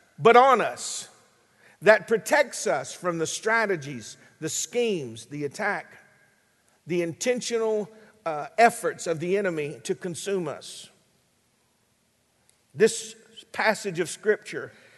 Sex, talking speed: male, 110 wpm